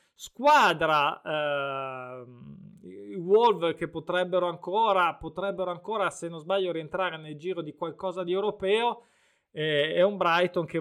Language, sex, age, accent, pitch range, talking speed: Italian, male, 20-39, native, 155-190 Hz, 135 wpm